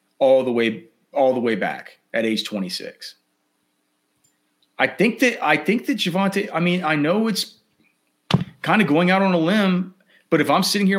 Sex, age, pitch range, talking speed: male, 30-49, 135-180 Hz, 185 wpm